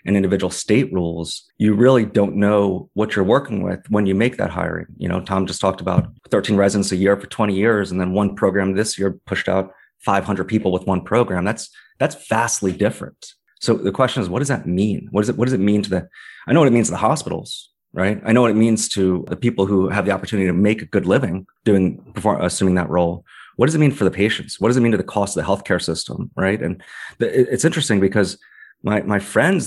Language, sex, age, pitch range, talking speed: English, male, 30-49, 95-115 Hz, 245 wpm